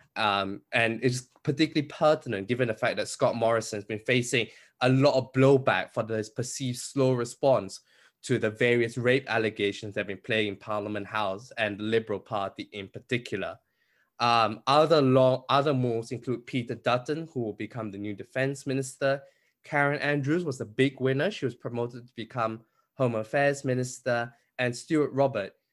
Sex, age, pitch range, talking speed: male, 20-39, 110-135 Hz, 170 wpm